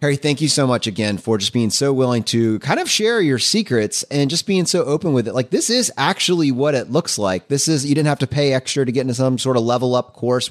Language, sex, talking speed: English, male, 280 wpm